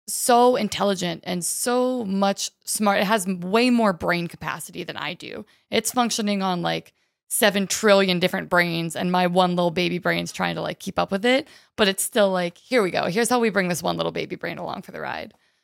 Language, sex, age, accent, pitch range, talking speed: English, female, 20-39, American, 175-215 Hz, 215 wpm